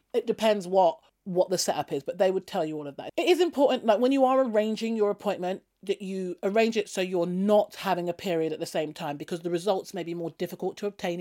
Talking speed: 255 wpm